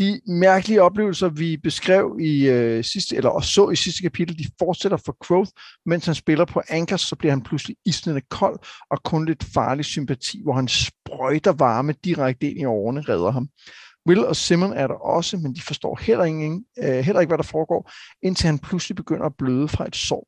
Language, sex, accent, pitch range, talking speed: Danish, male, native, 135-180 Hz, 205 wpm